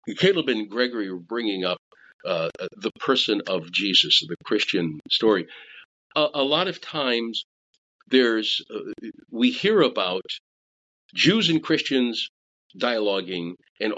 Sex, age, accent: male, 50-69, American